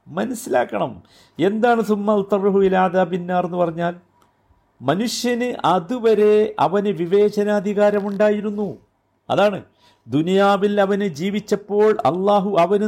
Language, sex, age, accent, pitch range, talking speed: Malayalam, male, 50-69, native, 145-215 Hz, 80 wpm